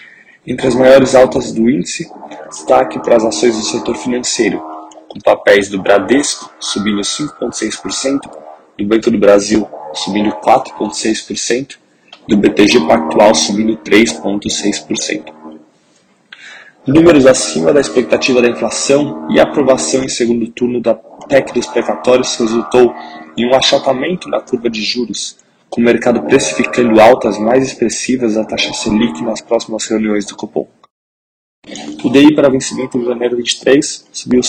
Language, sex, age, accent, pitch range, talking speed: Portuguese, male, 20-39, Brazilian, 105-125 Hz, 130 wpm